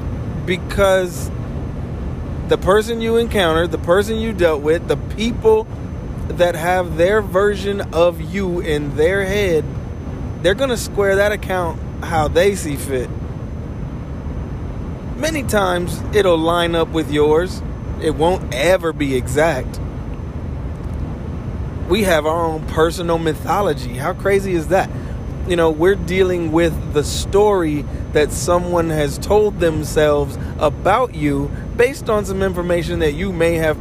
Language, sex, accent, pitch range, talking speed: English, male, American, 155-200 Hz, 135 wpm